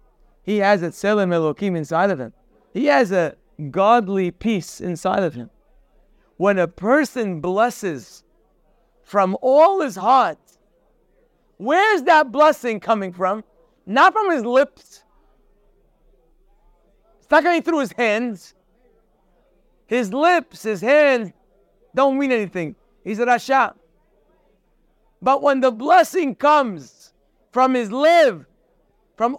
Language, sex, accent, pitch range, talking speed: English, male, American, 210-295 Hz, 120 wpm